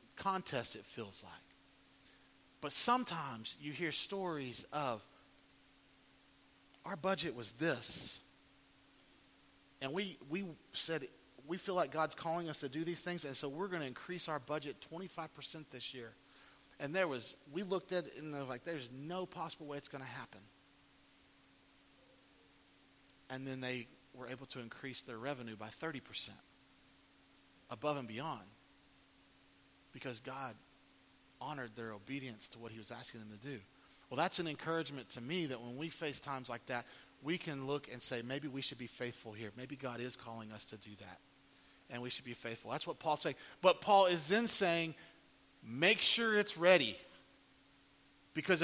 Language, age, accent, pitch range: English, 40-59, American, 125-170 Hz